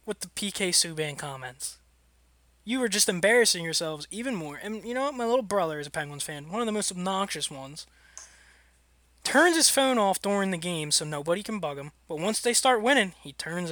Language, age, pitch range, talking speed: English, 20-39, 140-200 Hz, 210 wpm